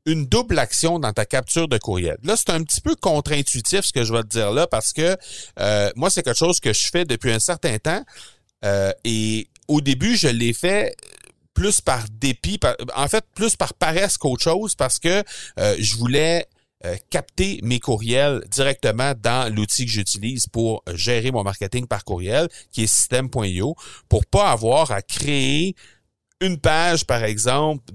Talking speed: 185 wpm